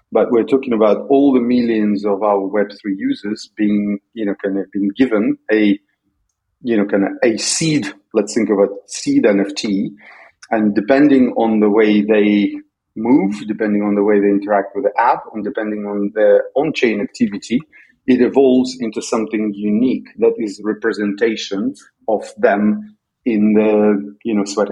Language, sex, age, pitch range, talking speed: English, male, 40-59, 105-135 Hz, 170 wpm